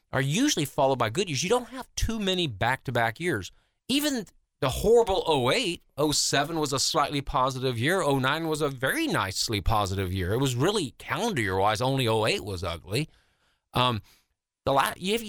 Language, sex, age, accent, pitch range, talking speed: English, male, 40-59, American, 115-160 Hz, 170 wpm